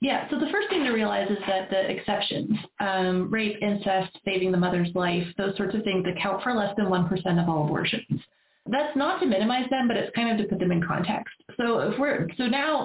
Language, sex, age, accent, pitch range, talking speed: English, female, 20-39, American, 185-225 Hz, 225 wpm